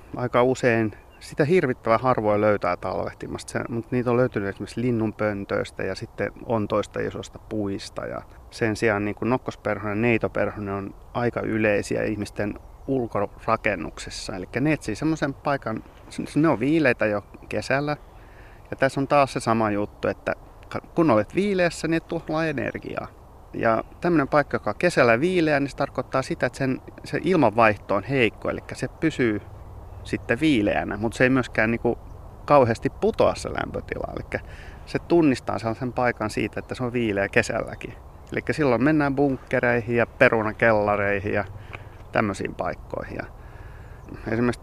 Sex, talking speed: male, 145 wpm